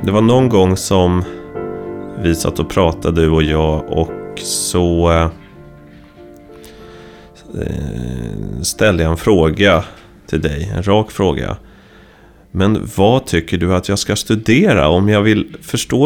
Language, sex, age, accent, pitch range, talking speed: Swedish, male, 30-49, native, 85-105 Hz, 130 wpm